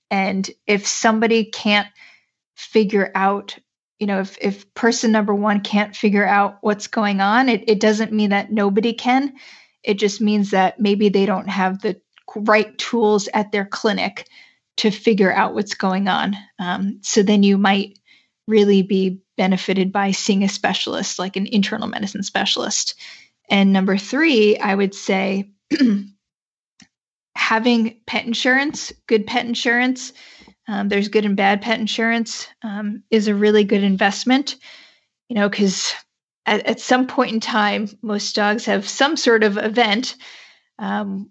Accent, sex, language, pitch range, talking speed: American, female, English, 200-225 Hz, 155 wpm